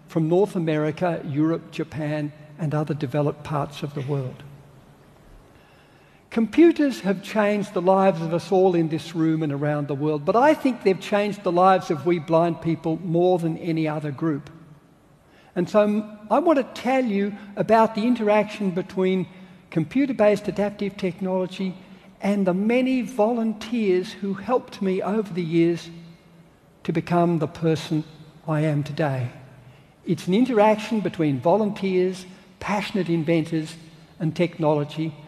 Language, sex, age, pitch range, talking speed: English, male, 60-79, 155-195 Hz, 140 wpm